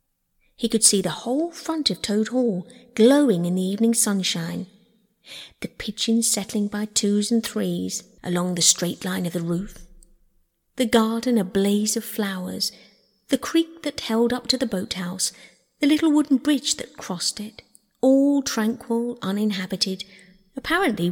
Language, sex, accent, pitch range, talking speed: English, female, British, 190-240 Hz, 150 wpm